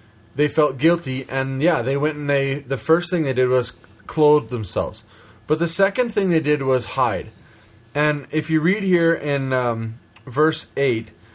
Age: 20-39